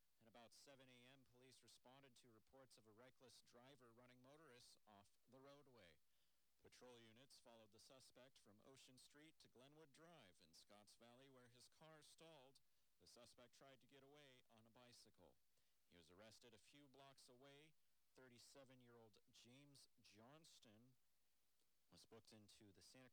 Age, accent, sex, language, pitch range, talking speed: 50-69, American, male, English, 105-135 Hz, 150 wpm